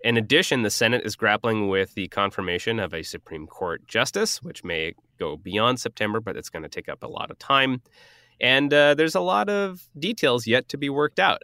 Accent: American